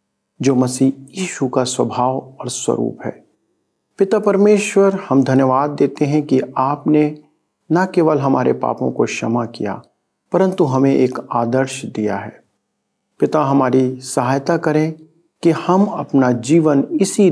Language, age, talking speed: Hindi, 50-69, 130 wpm